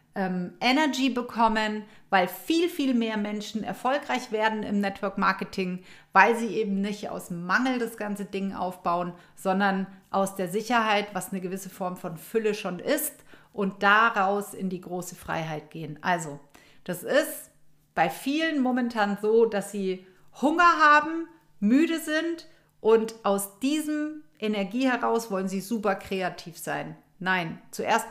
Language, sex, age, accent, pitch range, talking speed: German, female, 40-59, German, 185-230 Hz, 140 wpm